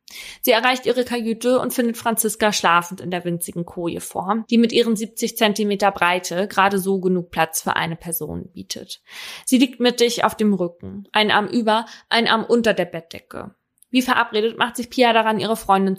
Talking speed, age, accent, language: 180 wpm, 20-39, German, German